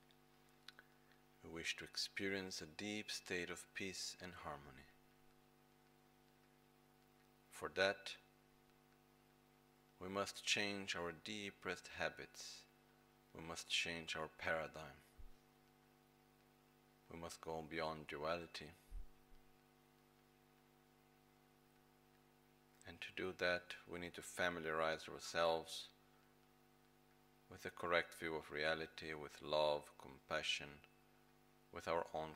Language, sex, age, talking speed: Italian, male, 50-69, 95 wpm